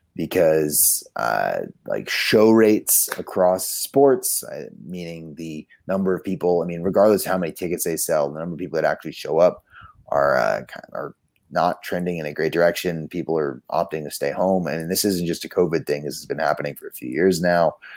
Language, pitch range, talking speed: English, 80-95 Hz, 200 wpm